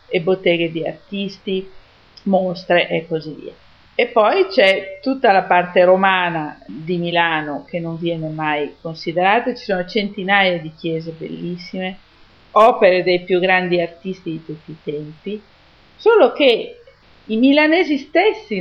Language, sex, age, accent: Italian, female, 40-59, native